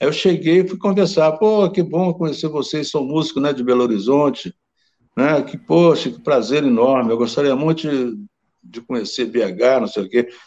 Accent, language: Brazilian, Portuguese